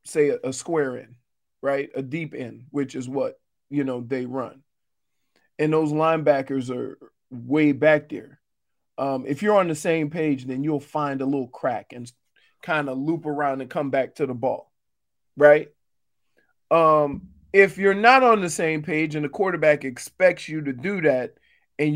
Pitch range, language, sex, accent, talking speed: 140-180 Hz, English, male, American, 175 wpm